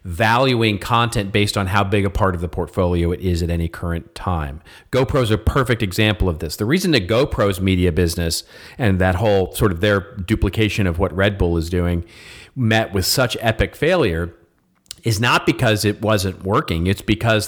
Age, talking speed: 40-59, 190 wpm